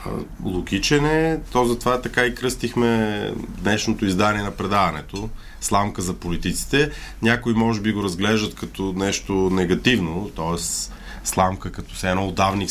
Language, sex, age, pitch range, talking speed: Bulgarian, male, 30-49, 95-120 Hz, 125 wpm